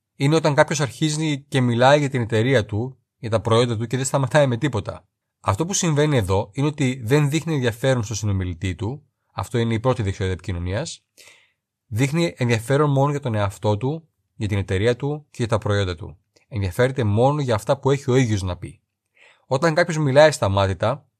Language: Greek